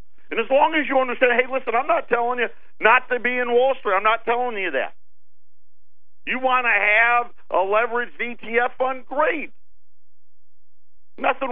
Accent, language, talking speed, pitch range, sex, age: American, English, 170 wpm, 165-265 Hz, male, 50-69